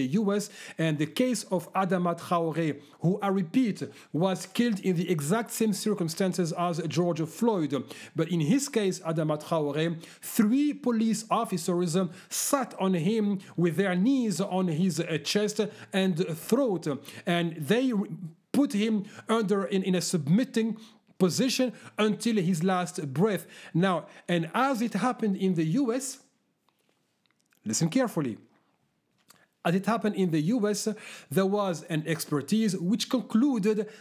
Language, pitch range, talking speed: English, 165-210 Hz, 135 wpm